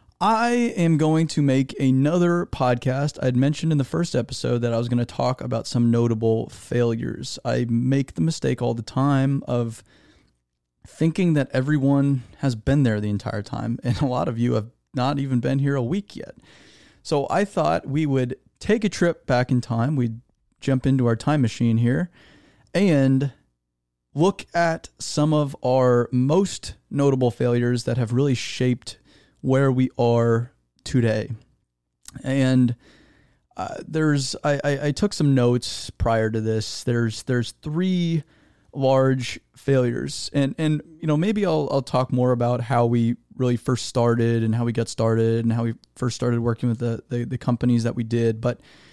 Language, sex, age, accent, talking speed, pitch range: English, male, 30-49, American, 175 wpm, 120-140 Hz